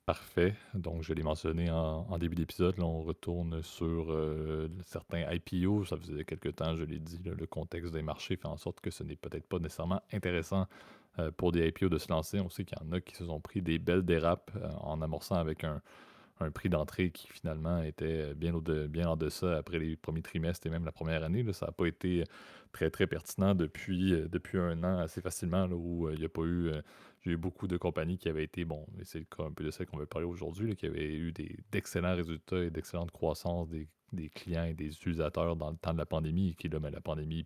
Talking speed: 245 wpm